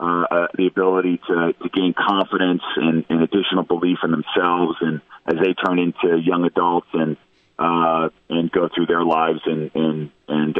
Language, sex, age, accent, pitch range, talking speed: English, male, 40-59, American, 85-105 Hz, 170 wpm